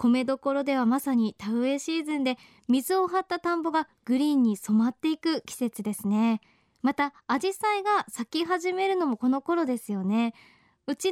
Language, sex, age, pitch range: Japanese, male, 20-39, 225-320 Hz